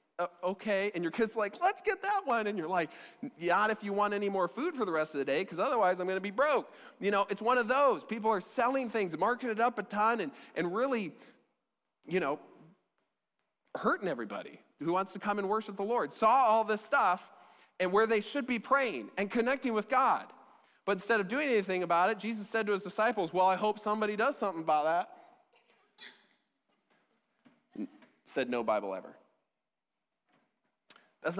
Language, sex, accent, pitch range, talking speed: English, male, American, 165-240 Hz, 195 wpm